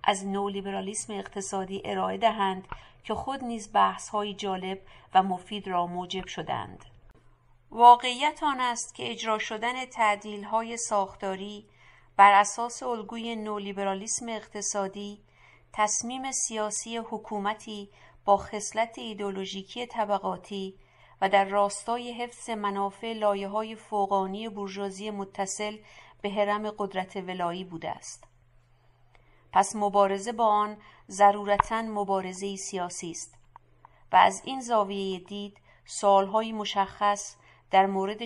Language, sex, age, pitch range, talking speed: English, female, 50-69, 195-215 Hz, 110 wpm